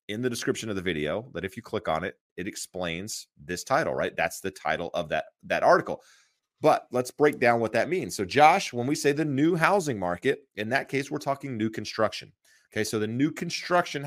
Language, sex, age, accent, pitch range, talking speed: English, male, 30-49, American, 100-130 Hz, 220 wpm